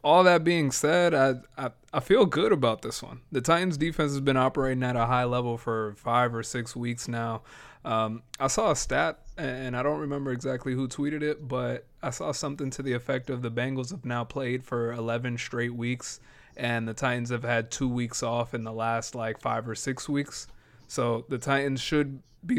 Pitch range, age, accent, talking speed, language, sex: 120-150 Hz, 20-39, American, 210 wpm, English, male